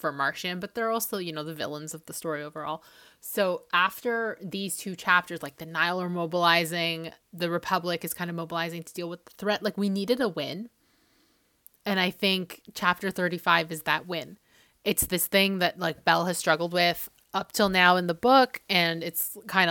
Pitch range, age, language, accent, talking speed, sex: 165-195 Hz, 20-39, English, American, 200 wpm, female